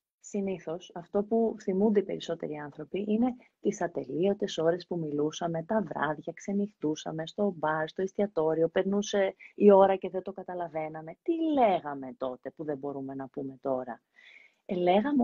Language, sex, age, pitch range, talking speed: Greek, female, 30-49, 175-245 Hz, 145 wpm